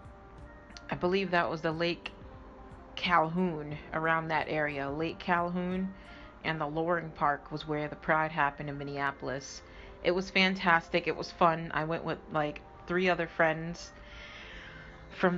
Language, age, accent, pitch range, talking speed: English, 30-49, American, 150-175 Hz, 145 wpm